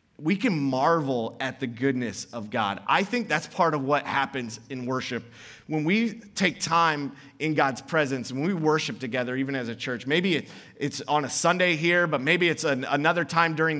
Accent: American